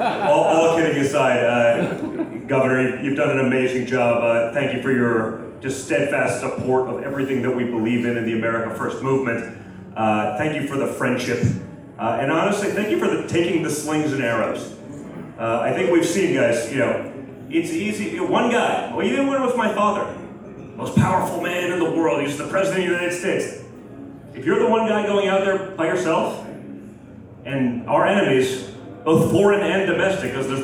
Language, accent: English, American